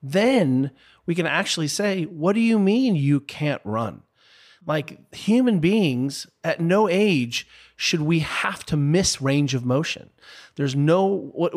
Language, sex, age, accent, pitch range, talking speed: English, male, 40-59, American, 125-160 Hz, 150 wpm